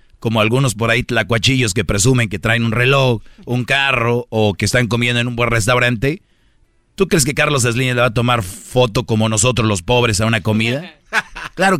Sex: male